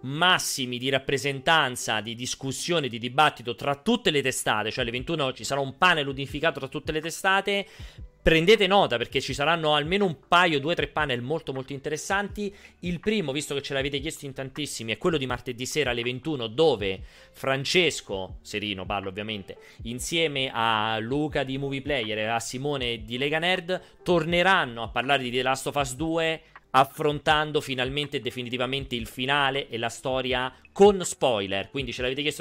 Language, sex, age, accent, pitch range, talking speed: Italian, male, 30-49, native, 115-155 Hz, 170 wpm